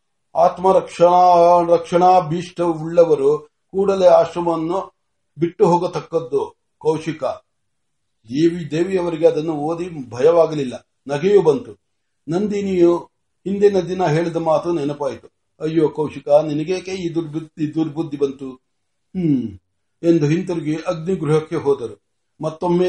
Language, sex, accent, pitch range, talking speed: Marathi, male, native, 155-180 Hz, 65 wpm